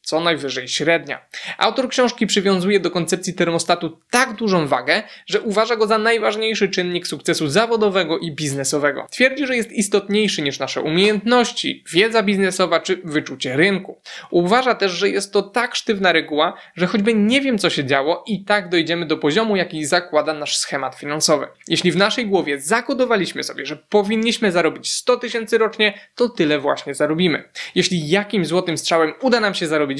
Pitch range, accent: 160-215 Hz, native